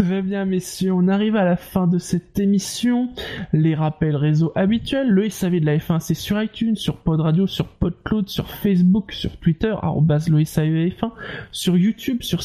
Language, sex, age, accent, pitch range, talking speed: French, male, 20-39, French, 165-210 Hz, 190 wpm